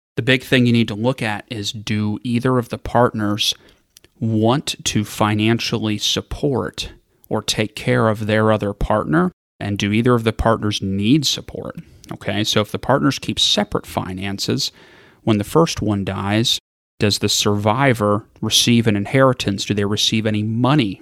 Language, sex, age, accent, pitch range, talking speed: English, male, 30-49, American, 100-115 Hz, 165 wpm